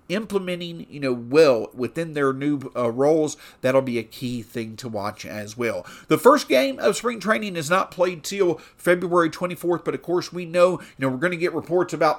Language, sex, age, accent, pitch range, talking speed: English, male, 40-59, American, 130-180 Hz, 210 wpm